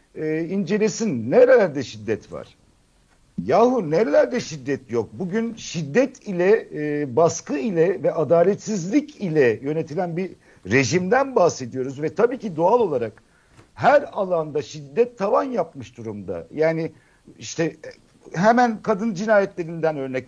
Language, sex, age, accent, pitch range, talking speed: Turkish, male, 60-79, native, 150-235 Hz, 115 wpm